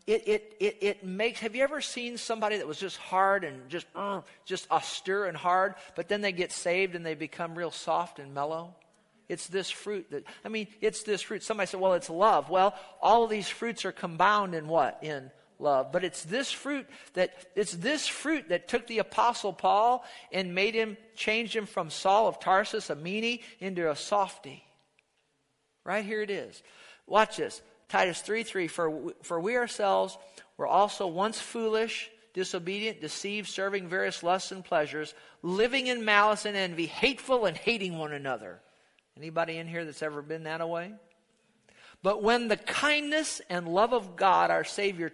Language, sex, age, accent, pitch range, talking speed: English, male, 50-69, American, 175-220 Hz, 185 wpm